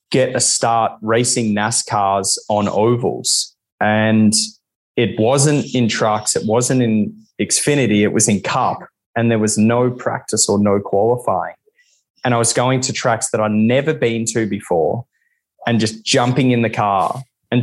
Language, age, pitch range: English, 20-39, 105-135 Hz